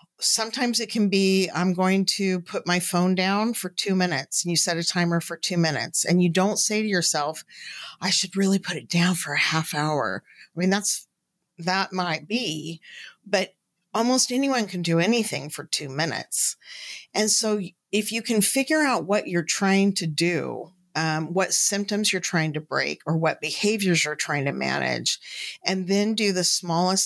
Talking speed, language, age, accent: 185 wpm, English, 40-59, American